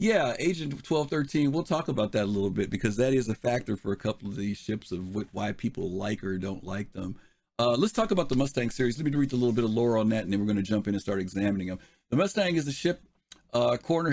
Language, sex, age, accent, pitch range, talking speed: English, male, 50-69, American, 110-145 Hz, 270 wpm